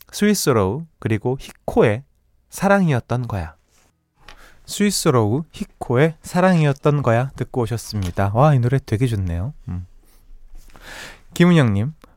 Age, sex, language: 20-39, male, Korean